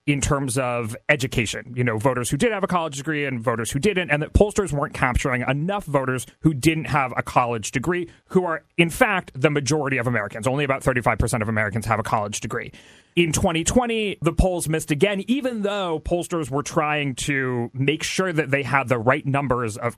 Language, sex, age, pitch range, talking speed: English, male, 30-49, 130-180 Hz, 205 wpm